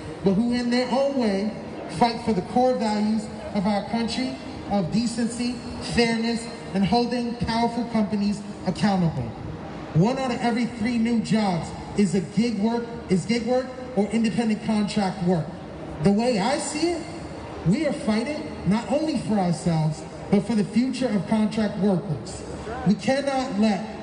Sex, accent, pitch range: male, American, 195-245 Hz